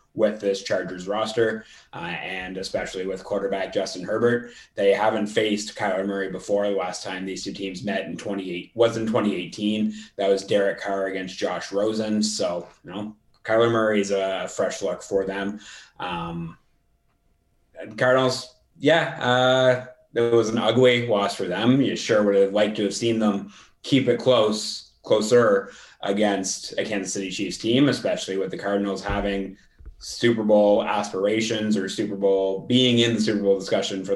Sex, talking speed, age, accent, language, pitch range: male, 170 wpm, 20-39, American, English, 95-110 Hz